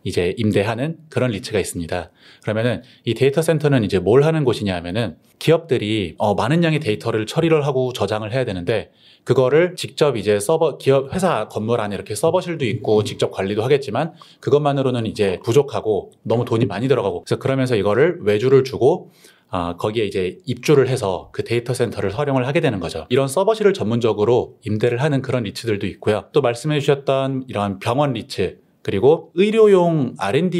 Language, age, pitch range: Korean, 30-49, 105-145 Hz